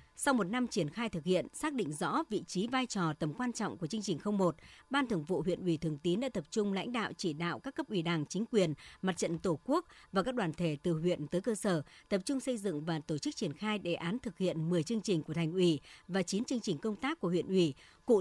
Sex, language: male, Vietnamese